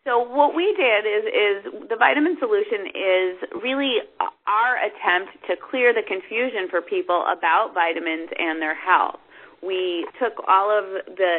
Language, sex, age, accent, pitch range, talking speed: English, female, 30-49, American, 170-225 Hz, 155 wpm